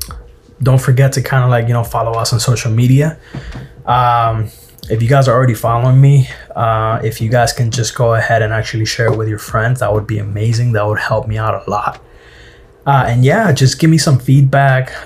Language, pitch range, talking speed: English, 115-130 Hz, 220 wpm